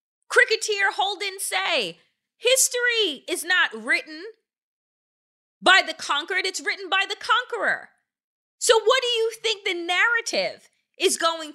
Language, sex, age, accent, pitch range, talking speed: English, female, 30-49, American, 315-435 Hz, 125 wpm